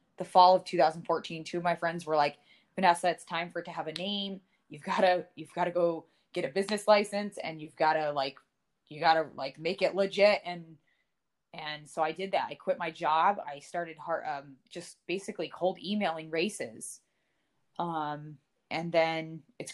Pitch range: 165-195 Hz